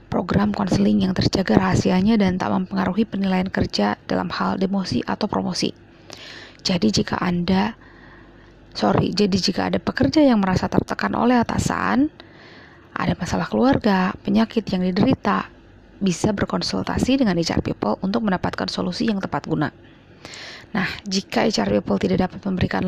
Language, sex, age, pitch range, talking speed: Indonesian, female, 20-39, 185-230 Hz, 135 wpm